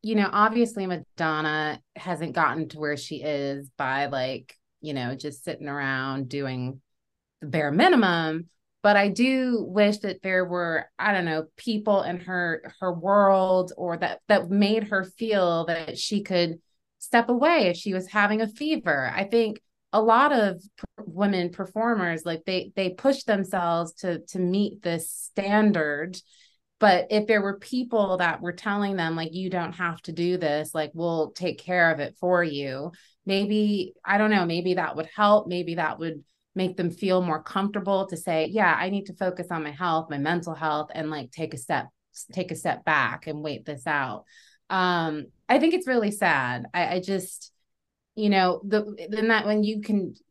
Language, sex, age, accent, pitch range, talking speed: English, female, 30-49, American, 160-205 Hz, 180 wpm